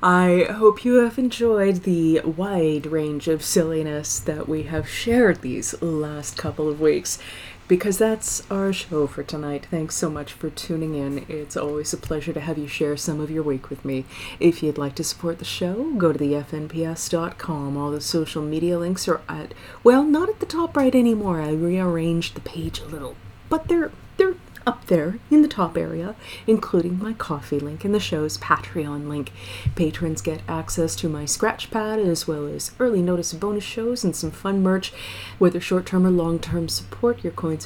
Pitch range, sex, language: 150-195 Hz, female, English